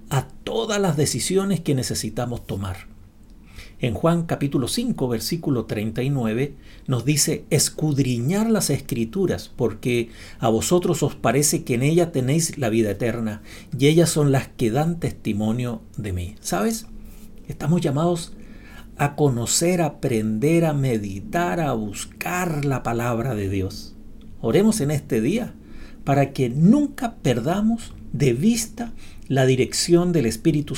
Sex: male